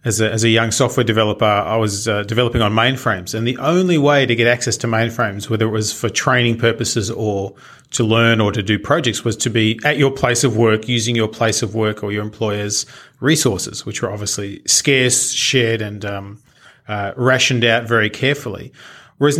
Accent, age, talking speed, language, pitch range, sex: Australian, 30-49, 200 wpm, English, 110-130 Hz, male